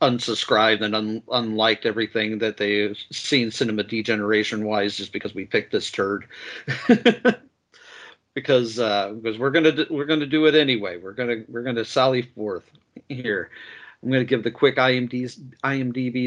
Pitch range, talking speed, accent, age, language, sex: 115-145 Hz, 145 wpm, American, 50-69, English, male